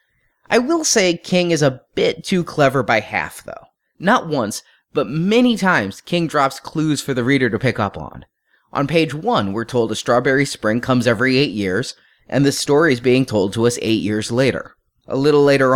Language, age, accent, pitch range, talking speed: English, 30-49, American, 125-155 Hz, 200 wpm